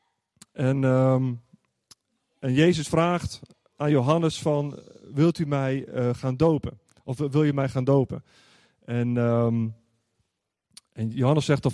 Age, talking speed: 30-49, 135 wpm